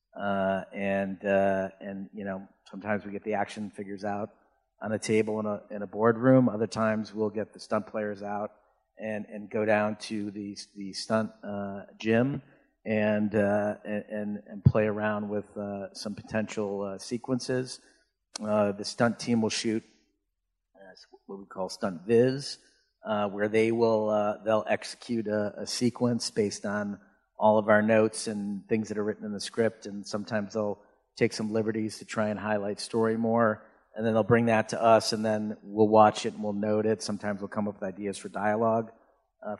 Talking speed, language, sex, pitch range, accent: 190 wpm, English, male, 105-115 Hz, American